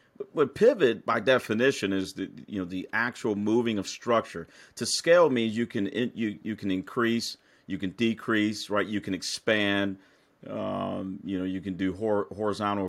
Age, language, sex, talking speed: 40-59, English, male, 170 wpm